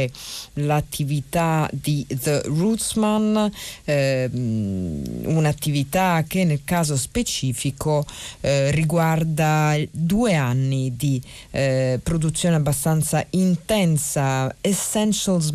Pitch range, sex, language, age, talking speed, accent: 135-180 Hz, female, Italian, 40-59, 75 wpm, native